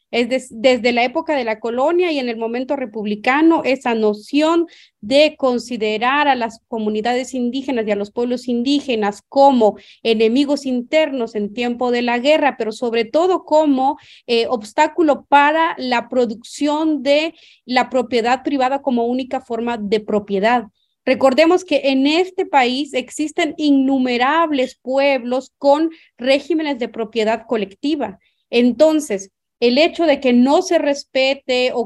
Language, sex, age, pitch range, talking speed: Spanish, female, 30-49, 230-285 Hz, 140 wpm